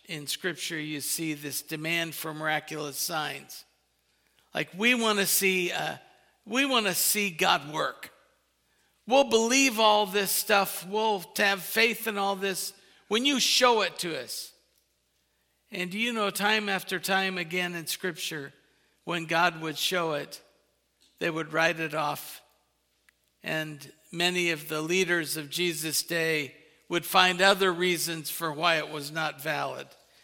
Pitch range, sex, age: 160-210 Hz, male, 50-69